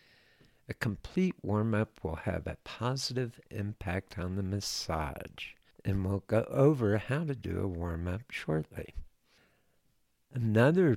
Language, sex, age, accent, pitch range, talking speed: English, male, 60-79, American, 90-120 Hz, 120 wpm